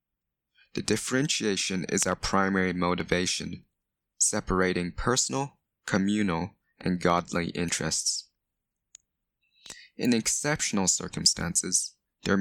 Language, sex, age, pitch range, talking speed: English, male, 20-39, 90-105 Hz, 75 wpm